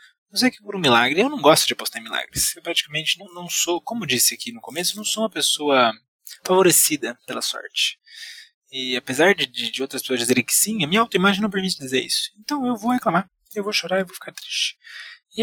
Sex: male